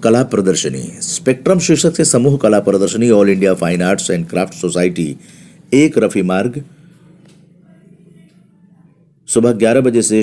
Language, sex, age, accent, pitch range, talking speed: Hindi, male, 50-69, native, 105-160 Hz, 130 wpm